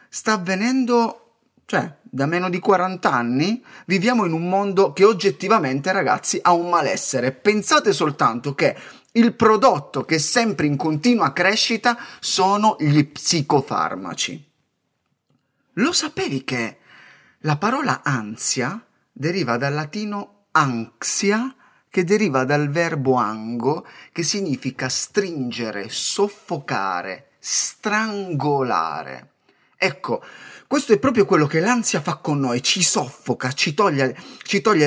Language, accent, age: Italian, native, 30-49